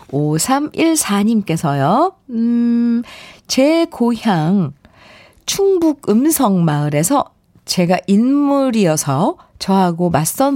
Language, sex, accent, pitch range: Korean, female, native, 180-275 Hz